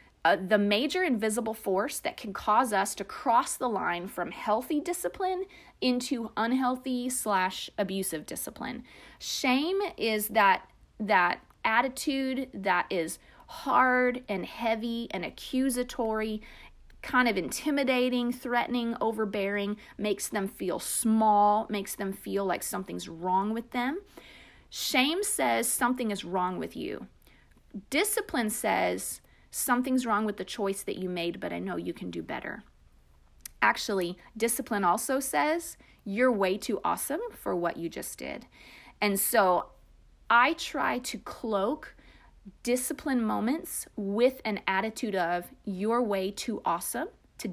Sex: female